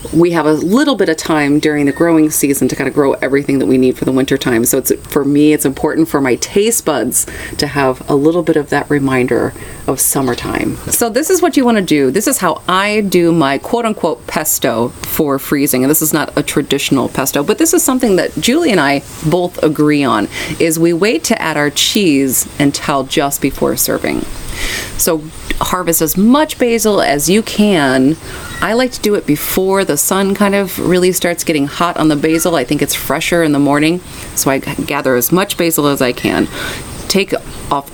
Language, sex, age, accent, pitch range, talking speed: English, female, 30-49, American, 140-190 Hz, 210 wpm